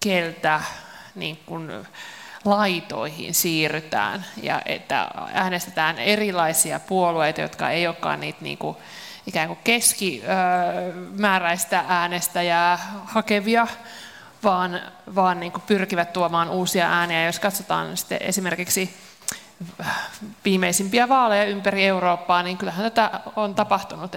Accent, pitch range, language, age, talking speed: native, 175-210 Hz, Finnish, 30-49, 100 wpm